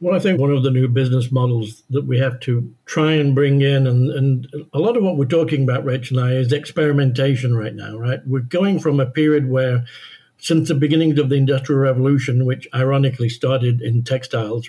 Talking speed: 215 wpm